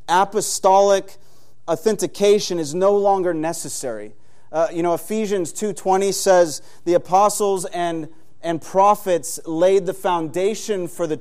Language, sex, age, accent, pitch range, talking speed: English, male, 30-49, American, 145-185 Hz, 120 wpm